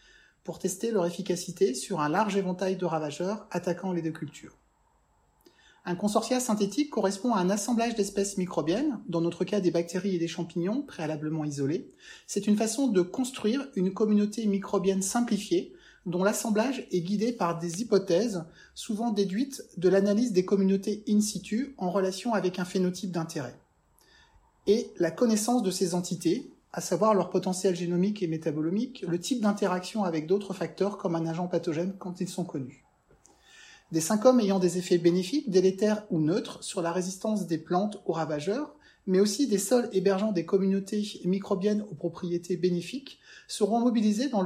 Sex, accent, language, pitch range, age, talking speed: male, French, French, 180-215 Hz, 30-49, 165 wpm